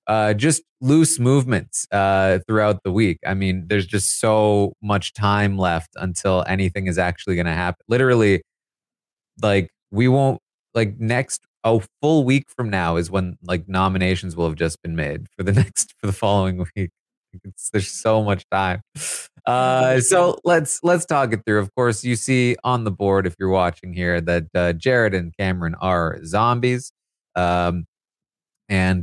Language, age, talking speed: English, 30-49, 170 wpm